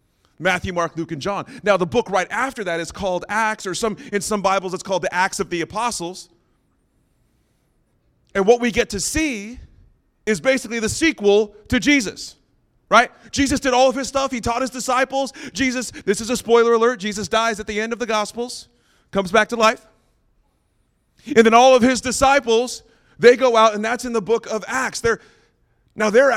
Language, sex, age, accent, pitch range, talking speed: English, male, 30-49, American, 185-240 Hz, 195 wpm